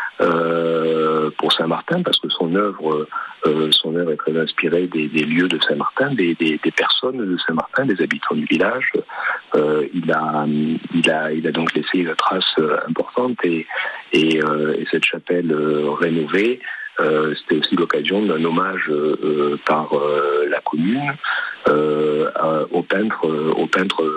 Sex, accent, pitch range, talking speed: male, French, 75-90 Hz, 160 wpm